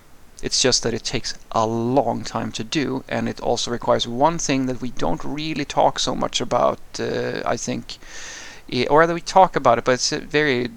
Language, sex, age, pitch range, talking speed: English, male, 30-49, 120-140 Hz, 200 wpm